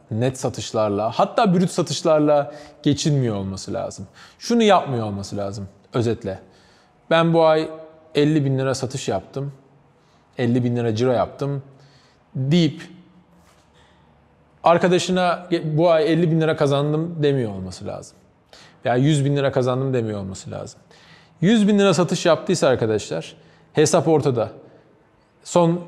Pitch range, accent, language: 125-170 Hz, native, Turkish